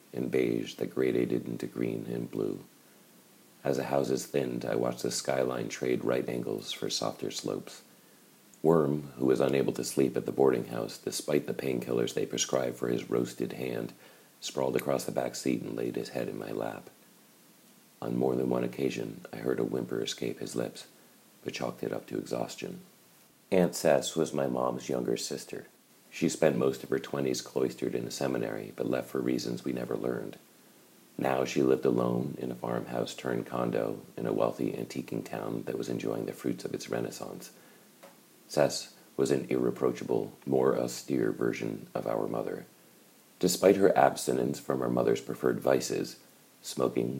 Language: English